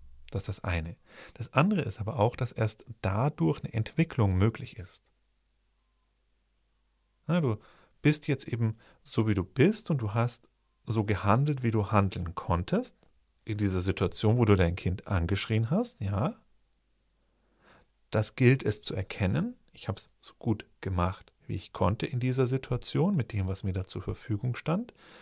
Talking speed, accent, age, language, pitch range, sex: 165 wpm, German, 40-59, German, 105-140 Hz, male